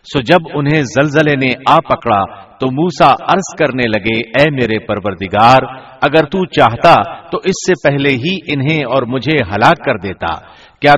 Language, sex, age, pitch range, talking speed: Urdu, male, 60-79, 115-160 Hz, 165 wpm